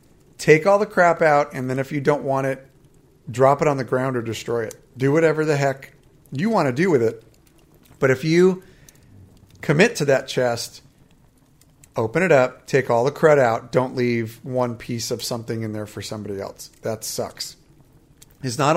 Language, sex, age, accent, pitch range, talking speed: English, male, 40-59, American, 120-155 Hz, 190 wpm